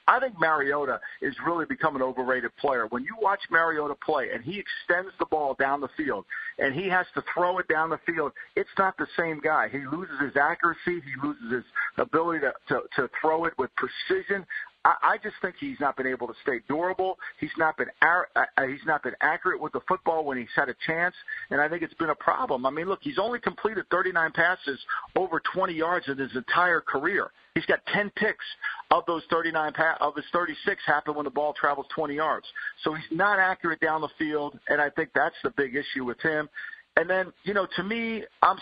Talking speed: 215 wpm